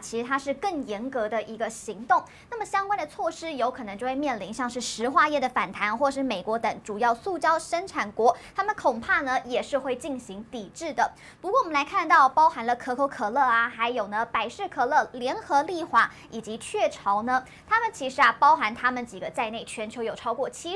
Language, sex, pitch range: Chinese, male, 230-320 Hz